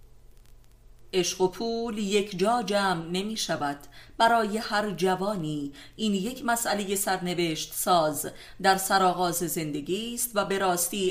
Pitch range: 170-205 Hz